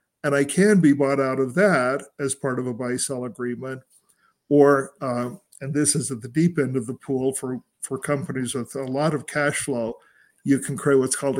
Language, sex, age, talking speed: English, male, 50-69, 210 wpm